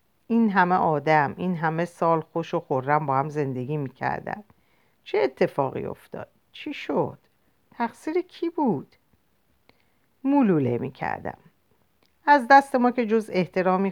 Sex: female